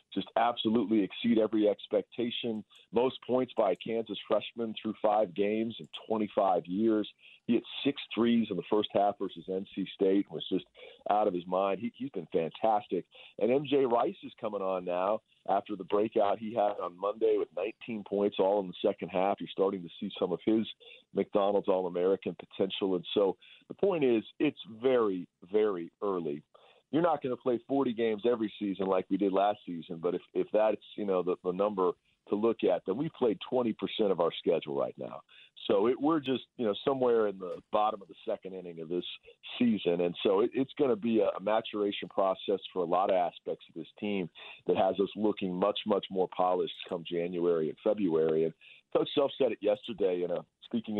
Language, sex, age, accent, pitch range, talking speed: English, male, 40-59, American, 95-115 Hz, 200 wpm